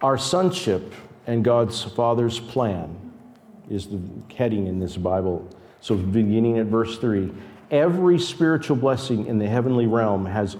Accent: American